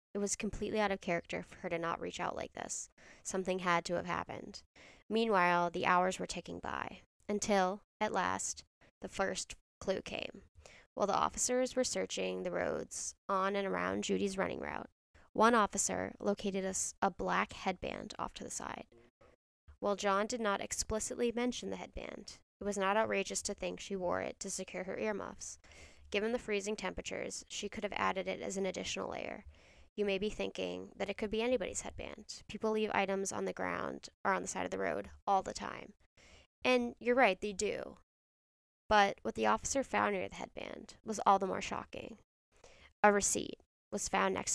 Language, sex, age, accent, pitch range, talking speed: English, female, 10-29, American, 165-210 Hz, 185 wpm